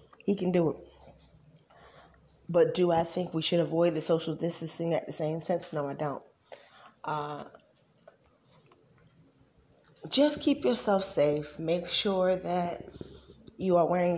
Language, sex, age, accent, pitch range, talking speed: English, female, 20-39, American, 165-210 Hz, 130 wpm